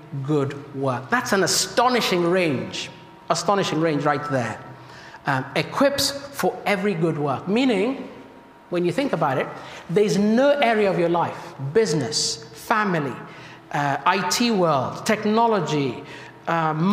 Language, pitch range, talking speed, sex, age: English, 155-210 Hz, 125 wpm, male, 60-79